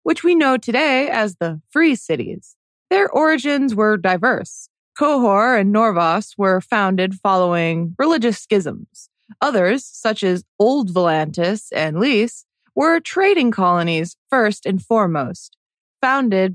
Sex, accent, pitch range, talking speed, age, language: female, American, 190-270 Hz, 125 wpm, 20-39, English